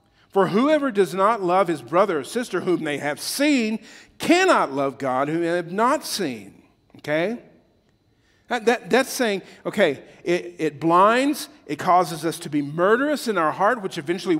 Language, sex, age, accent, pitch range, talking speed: English, male, 50-69, American, 150-195 Hz, 165 wpm